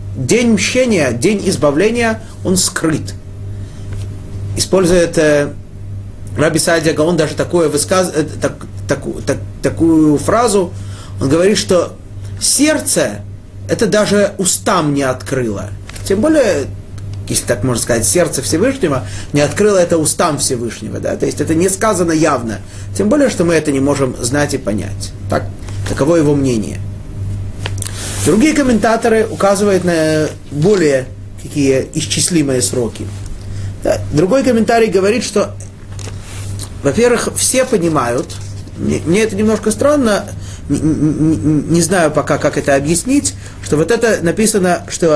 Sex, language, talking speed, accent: male, Russian, 125 wpm, native